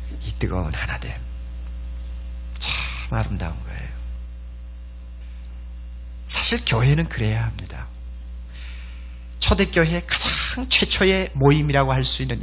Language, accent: Korean, native